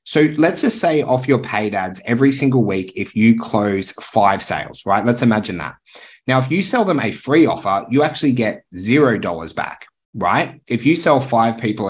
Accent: Australian